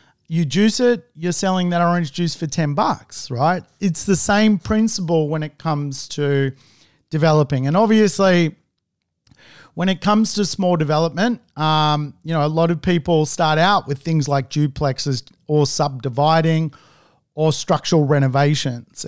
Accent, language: Australian, English